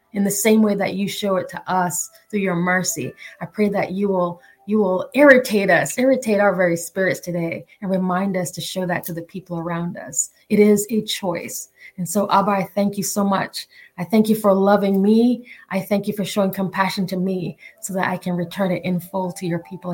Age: 20-39